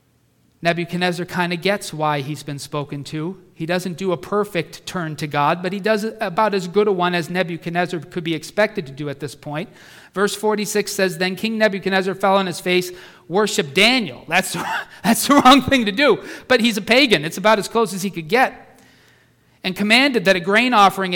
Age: 40-59